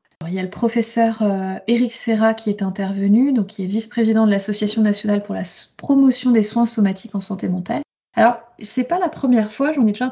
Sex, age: female, 20-39